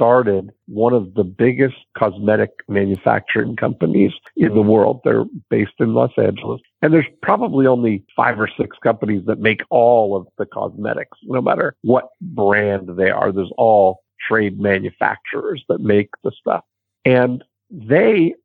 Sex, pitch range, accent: male, 100-120 Hz, American